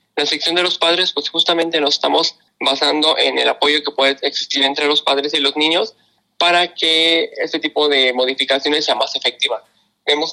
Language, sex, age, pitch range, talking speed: Spanish, male, 20-39, 130-155 Hz, 185 wpm